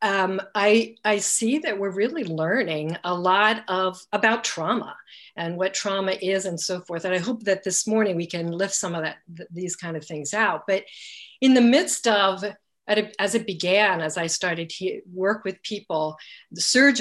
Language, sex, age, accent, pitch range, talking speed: English, female, 50-69, American, 170-220 Hz, 190 wpm